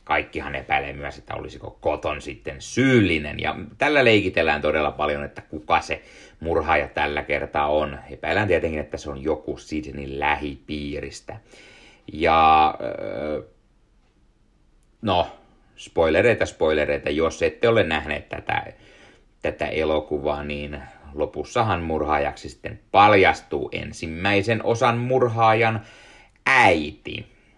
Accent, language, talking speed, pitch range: native, Finnish, 105 wpm, 75-90 Hz